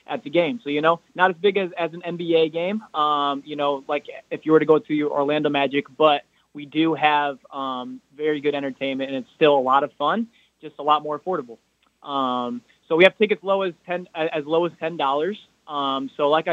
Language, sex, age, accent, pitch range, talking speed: English, male, 20-39, American, 140-165 Hz, 225 wpm